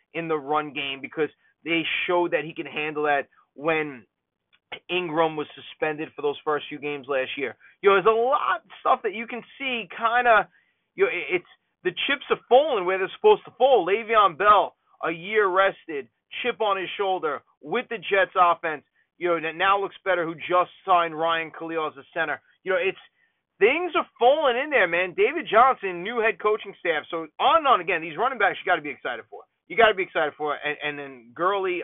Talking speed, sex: 215 wpm, male